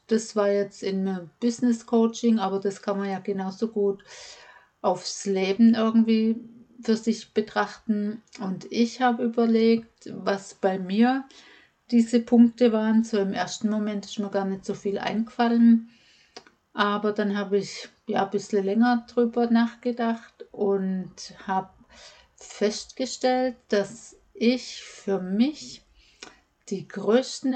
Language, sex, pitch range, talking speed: German, female, 200-230 Hz, 130 wpm